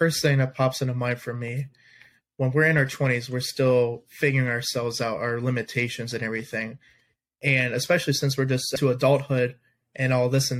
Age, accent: 20-39, American